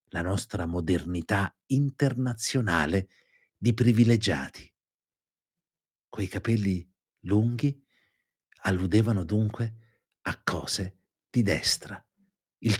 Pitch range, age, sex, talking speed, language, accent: 95-135 Hz, 50-69, male, 70 wpm, Italian, native